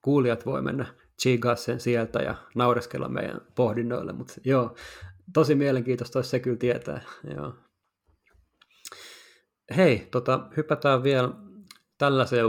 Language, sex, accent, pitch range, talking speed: Finnish, male, native, 120-135 Hz, 110 wpm